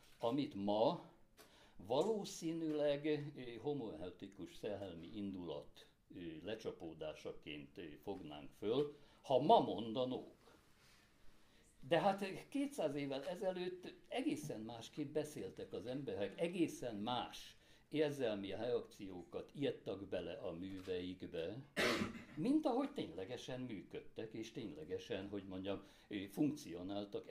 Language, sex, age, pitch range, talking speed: Hungarian, male, 60-79, 105-170 Hz, 85 wpm